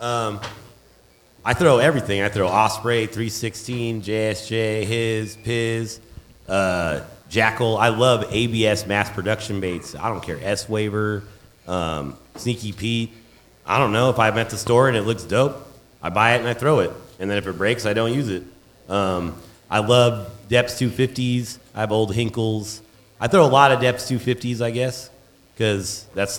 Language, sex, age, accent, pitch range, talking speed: English, male, 30-49, American, 95-120 Hz, 170 wpm